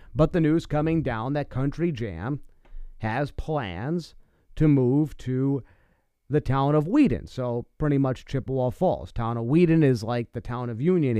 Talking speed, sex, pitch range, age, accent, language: 165 wpm, male, 110-145 Hz, 30-49, American, English